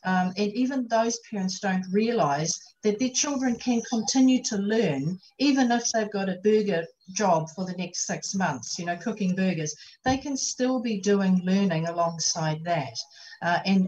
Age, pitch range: 50-69, 175-220 Hz